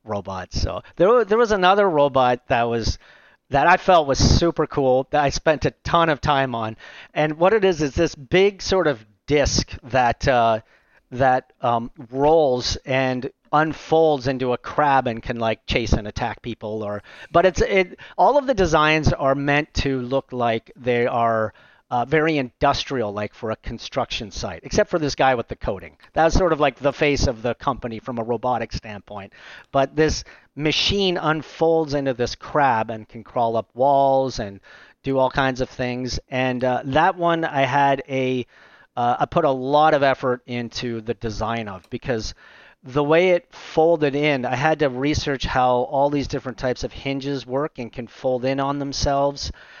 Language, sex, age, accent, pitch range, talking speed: English, male, 40-59, American, 120-150 Hz, 185 wpm